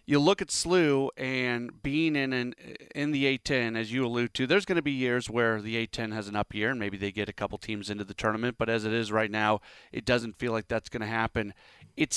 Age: 30-49